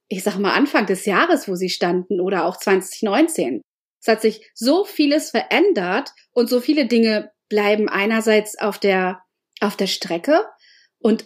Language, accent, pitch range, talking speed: German, German, 210-265 Hz, 155 wpm